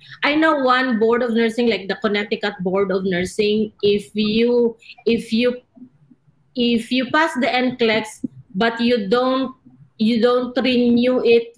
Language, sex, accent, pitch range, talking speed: English, female, Filipino, 205-245 Hz, 145 wpm